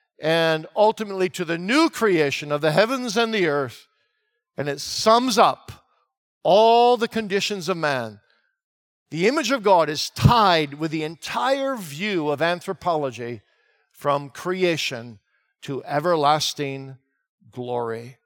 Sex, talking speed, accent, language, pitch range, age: male, 125 wpm, American, English, 145-215 Hz, 50-69